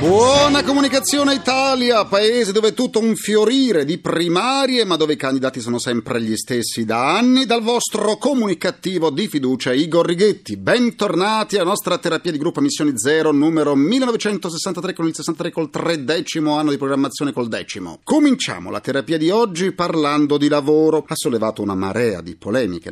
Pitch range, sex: 120-180 Hz, male